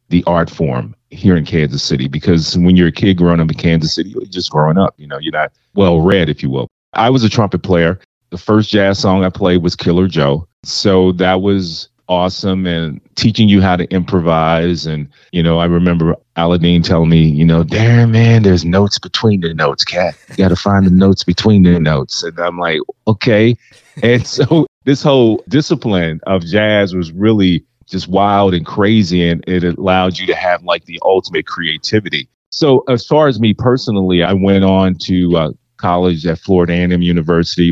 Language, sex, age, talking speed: English, male, 30-49, 195 wpm